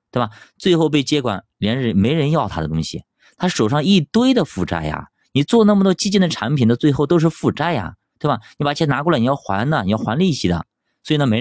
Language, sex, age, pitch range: Chinese, male, 20-39, 90-135 Hz